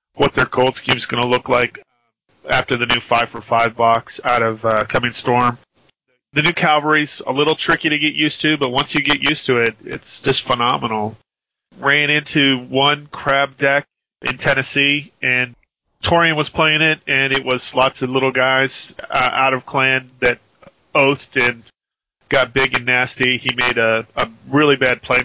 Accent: American